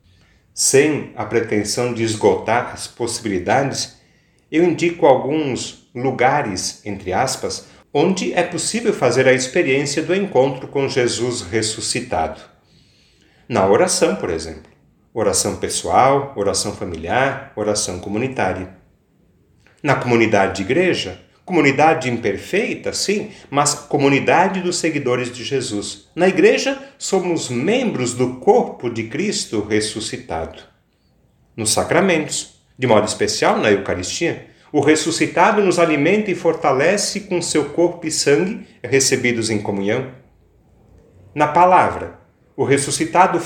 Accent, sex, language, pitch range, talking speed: Brazilian, male, Portuguese, 110-165 Hz, 110 wpm